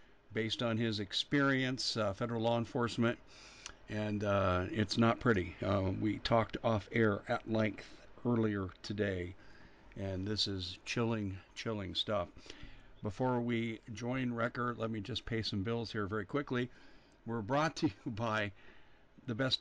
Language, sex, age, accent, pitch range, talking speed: English, male, 50-69, American, 105-130 Hz, 145 wpm